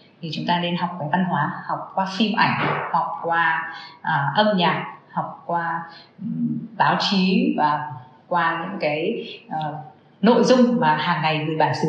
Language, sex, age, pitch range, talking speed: Vietnamese, female, 20-39, 160-215 Hz, 175 wpm